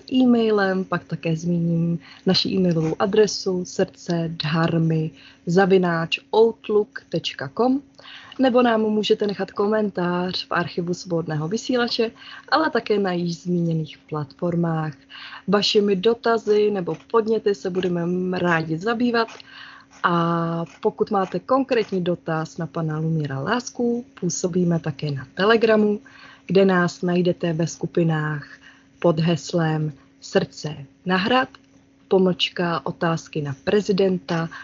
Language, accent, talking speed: Czech, native, 100 wpm